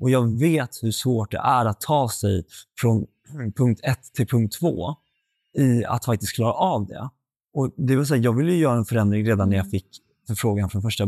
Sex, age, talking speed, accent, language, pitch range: male, 20-39, 210 wpm, native, Swedish, 105-125 Hz